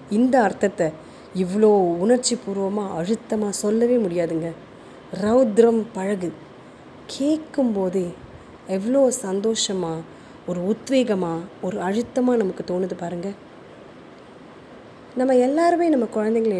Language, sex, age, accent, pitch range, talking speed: Tamil, female, 20-39, native, 180-220 Hz, 85 wpm